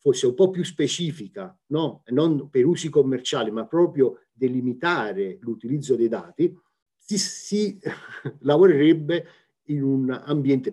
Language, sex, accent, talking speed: Italian, male, native, 125 wpm